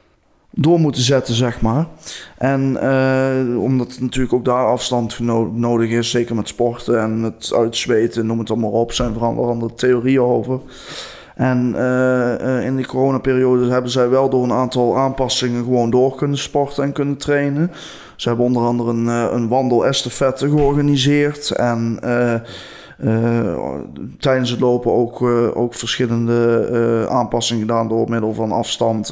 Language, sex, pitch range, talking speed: Dutch, male, 120-130 Hz, 150 wpm